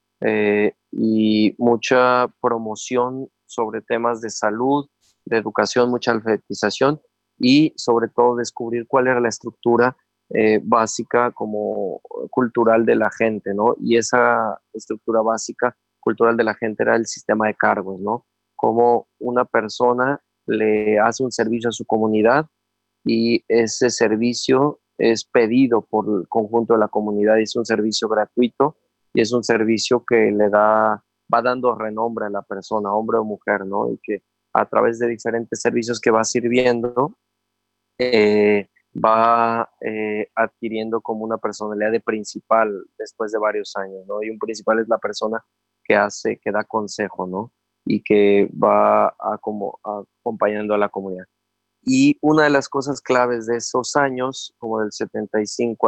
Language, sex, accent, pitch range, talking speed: Spanish, male, Mexican, 110-120 Hz, 155 wpm